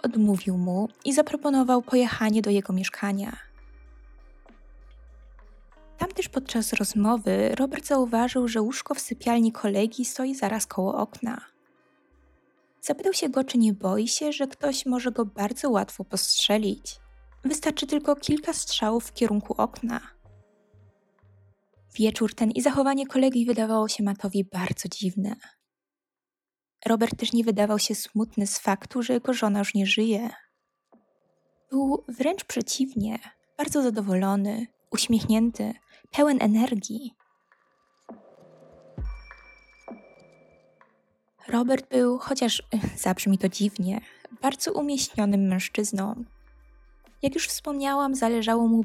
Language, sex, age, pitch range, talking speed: Polish, female, 20-39, 205-260 Hz, 110 wpm